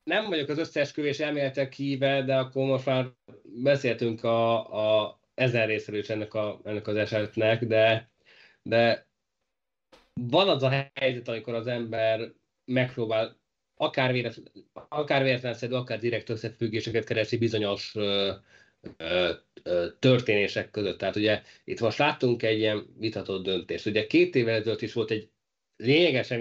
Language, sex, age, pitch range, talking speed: Hungarian, male, 20-39, 110-125 Hz, 140 wpm